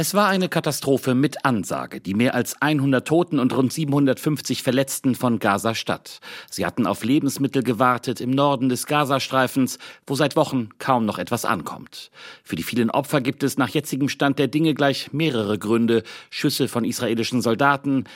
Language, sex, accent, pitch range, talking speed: German, male, German, 120-140 Hz, 170 wpm